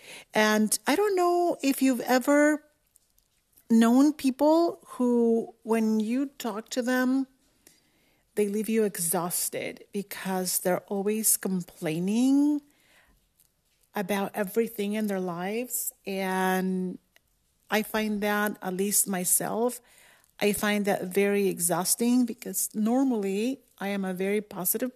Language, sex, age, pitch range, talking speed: English, female, 40-59, 195-255 Hz, 115 wpm